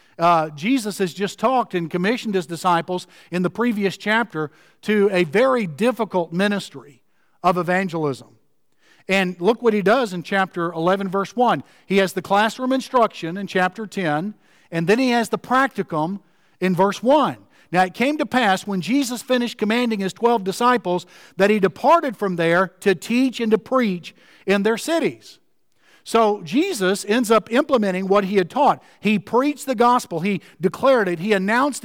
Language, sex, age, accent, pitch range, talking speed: English, male, 50-69, American, 190-260 Hz, 170 wpm